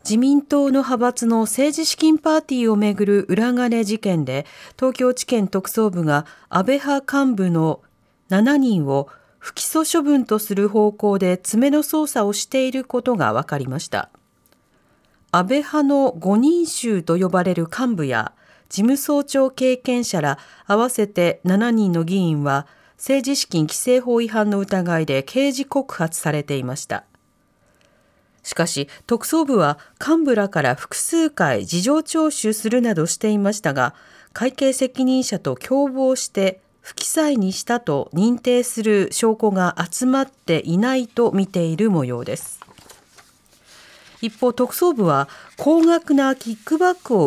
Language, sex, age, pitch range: Japanese, female, 40-59, 185-265 Hz